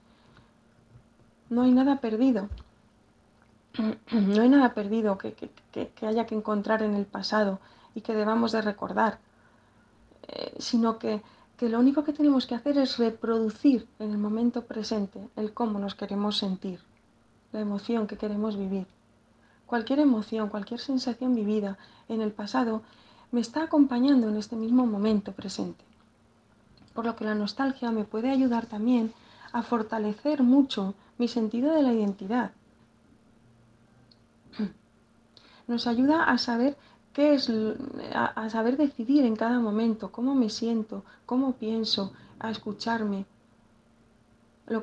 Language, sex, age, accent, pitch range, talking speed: Spanish, female, 40-59, Spanish, 205-245 Hz, 135 wpm